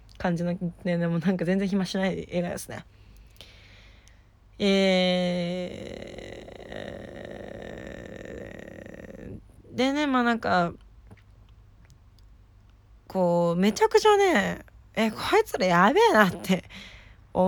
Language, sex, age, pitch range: Japanese, female, 20-39, 165-220 Hz